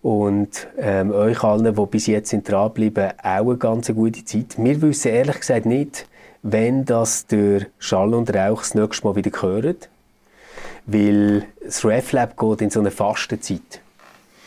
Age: 30-49